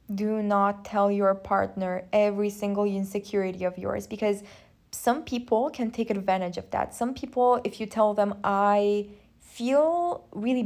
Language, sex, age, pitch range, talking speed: English, female, 20-39, 185-235 Hz, 150 wpm